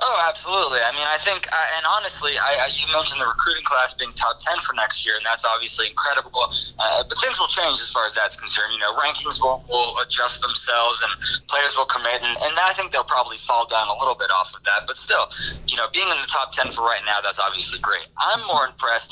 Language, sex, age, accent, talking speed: English, male, 20-39, American, 240 wpm